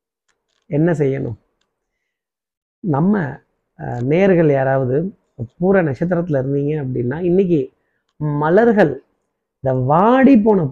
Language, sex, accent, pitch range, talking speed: Tamil, male, native, 135-175 Hz, 80 wpm